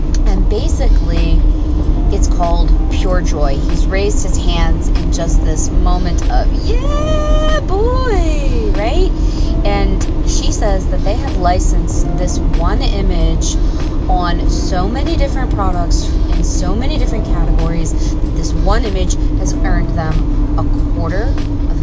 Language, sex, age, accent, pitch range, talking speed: English, female, 20-39, American, 75-85 Hz, 130 wpm